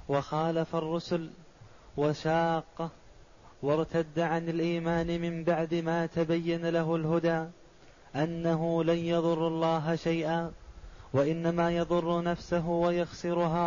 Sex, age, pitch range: male, 20-39, 165-175 Hz